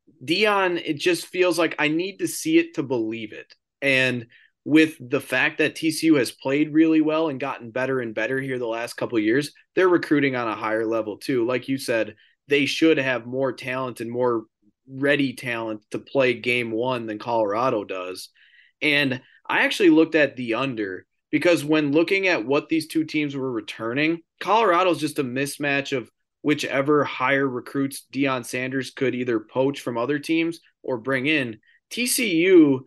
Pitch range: 125-155 Hz